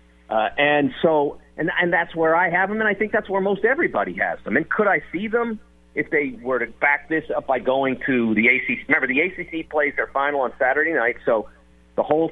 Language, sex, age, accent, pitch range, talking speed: English, male, 50-69, American, 120-165 Hz, 235 wpm